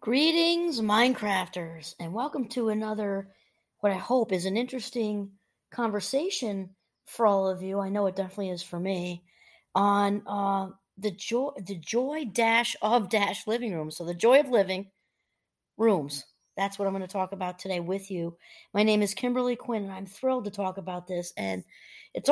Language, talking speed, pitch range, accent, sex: English, 175 wpm, 180-225 Hz, American, female